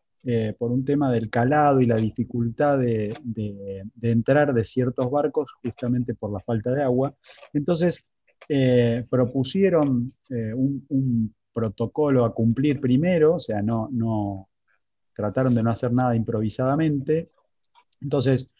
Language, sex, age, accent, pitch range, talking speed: Spanish, male, 20-39, Argentinian, 115-140 Hz, 130 wpm